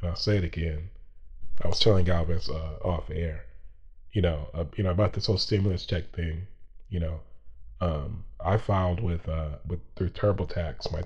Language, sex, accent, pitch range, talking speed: English, male, American, 80-100 Hz, 185 wpm